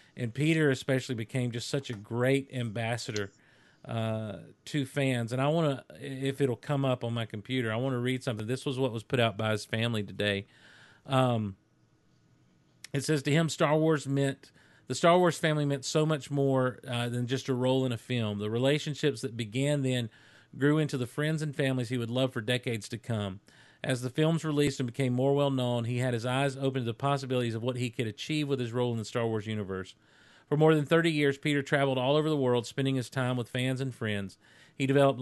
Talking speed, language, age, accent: 220 wpm, English, 40-59, American